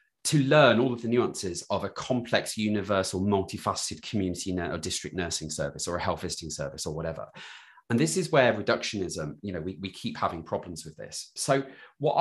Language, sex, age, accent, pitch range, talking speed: English, male, 30-49, British, 90-135 Hz, 190 wpm